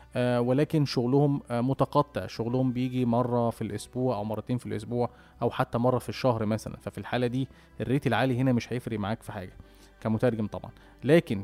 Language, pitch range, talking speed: Arabic, 115-140 Hz, 180 wpm